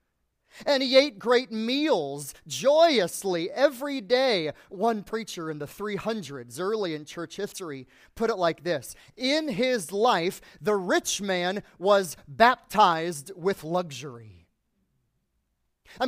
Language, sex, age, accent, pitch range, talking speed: English, male, 30-49, American, 155-230 Hz, 120 wpm